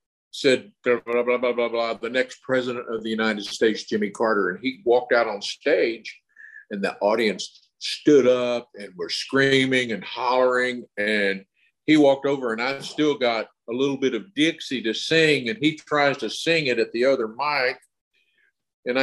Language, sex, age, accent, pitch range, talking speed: English, male, 50-69, American, 120-140 Hz, 185 wpm